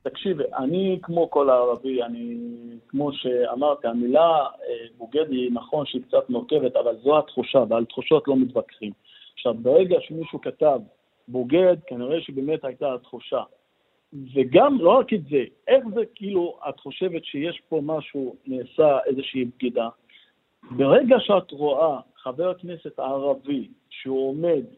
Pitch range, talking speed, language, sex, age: 135-180 Hz, 135 wpm, Hebrew, male, 50-69